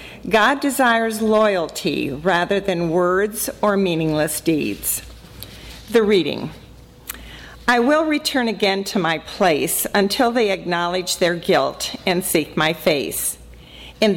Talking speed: 120 wpm